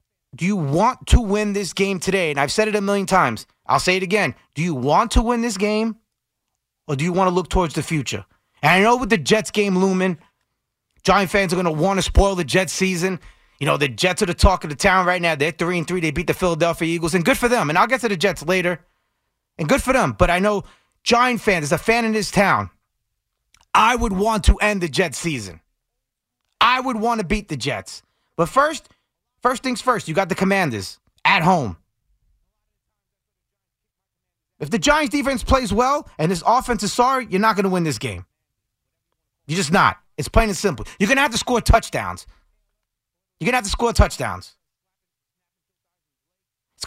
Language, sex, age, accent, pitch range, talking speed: English, male, 30-49, American, 155-215 Hz, 210 wpm